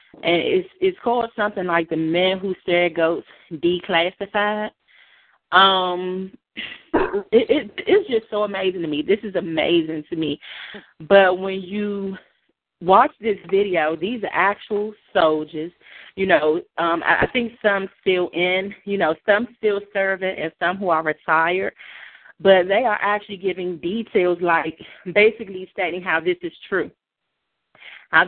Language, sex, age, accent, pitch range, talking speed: English, female, 30-49, American, 170-205 Hz, 145 wpm